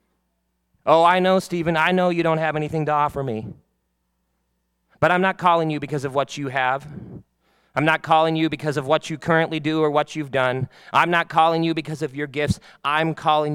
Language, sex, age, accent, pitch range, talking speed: English, male, 30-49, American, 140-205 Hz, 210 wpm